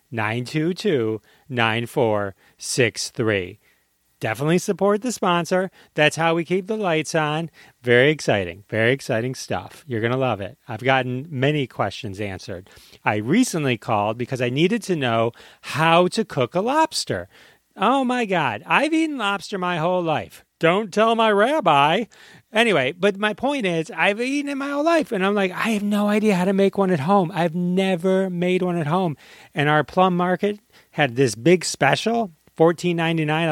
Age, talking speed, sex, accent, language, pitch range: 40-59, 165 wpm, male, American, English, 130-205 Hz